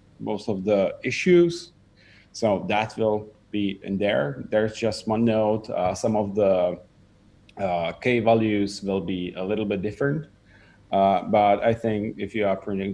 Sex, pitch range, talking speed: male, 100-115 Hz, 160 wpm